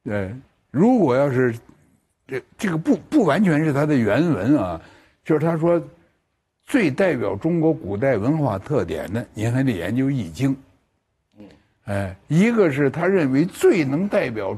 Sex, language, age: male, Chinese, 60-79